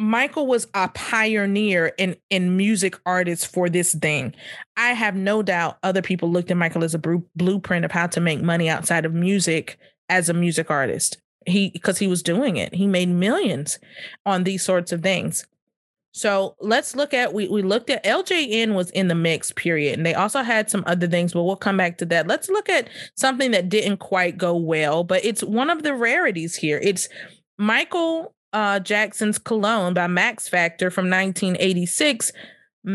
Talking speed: 190 wpm